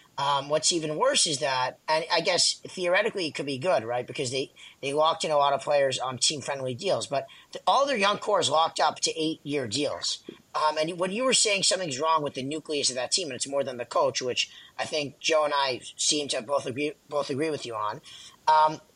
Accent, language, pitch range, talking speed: American, English, 140-170 Hz, 235 wpm